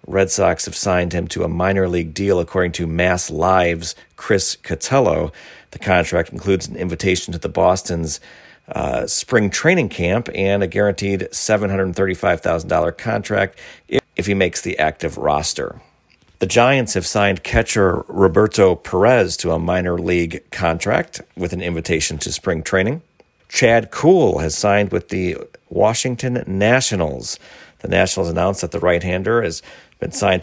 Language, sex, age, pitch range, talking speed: English, male, 40-59, 85-105 Hz, 155 wpm